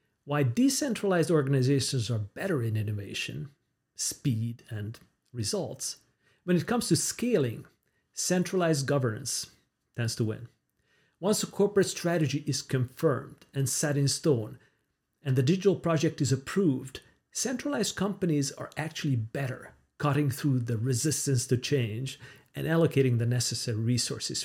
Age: 40-59